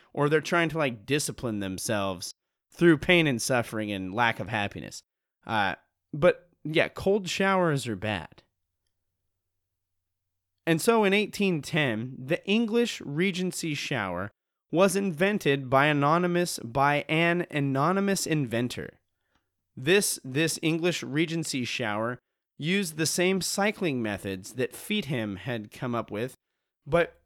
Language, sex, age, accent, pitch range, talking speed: English, male, 30-49, American, 125-180 Hz, 120 wpm